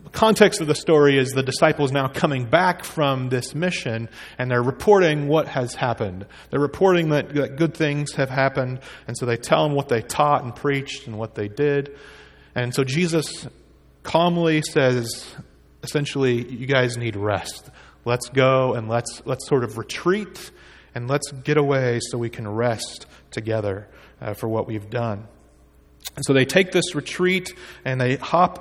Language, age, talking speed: English, 30-49, 170 wpm